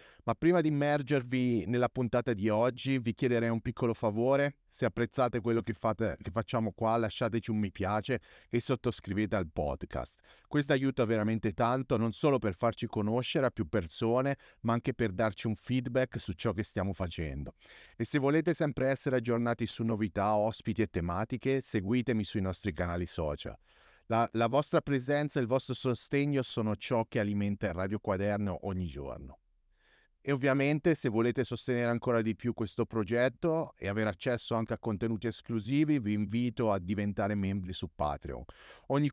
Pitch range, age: 105-130 Hz, 30-49